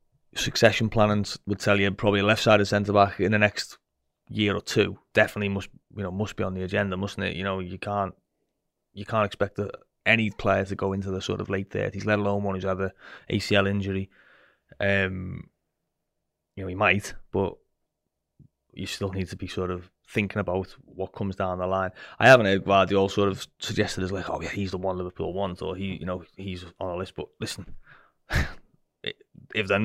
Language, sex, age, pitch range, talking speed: English, male, 20-39, 95-100 Hz, 205 wpm